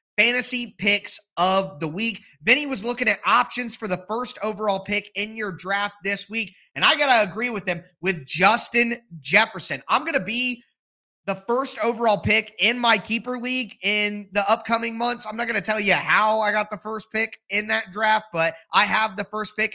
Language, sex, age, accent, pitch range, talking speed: English, male, 20-39, American, 180-225 Hz, 205 wpm